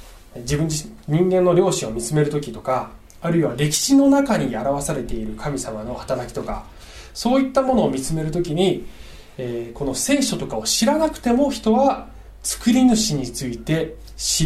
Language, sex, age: Japanese, male, 20-39